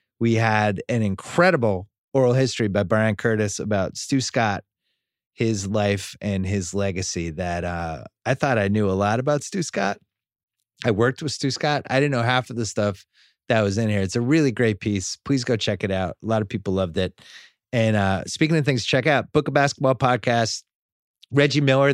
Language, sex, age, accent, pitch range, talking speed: English, male, 30-49, American, 105-135 Hz, 200 wpm